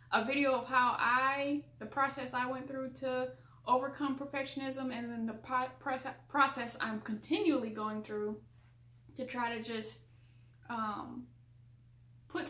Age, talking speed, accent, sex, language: 10-29, 140 wpm, American, female, English